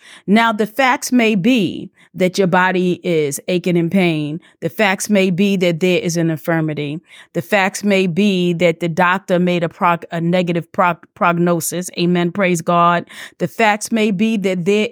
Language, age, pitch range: English, 30-49, 185-235 Hz